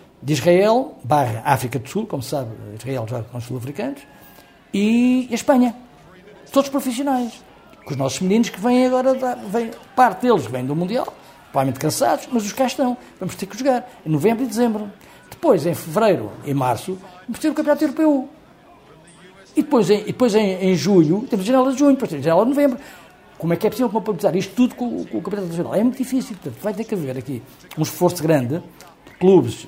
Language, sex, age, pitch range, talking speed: Portuguese, male, 60-79, 145-245 Hz, 210 wpm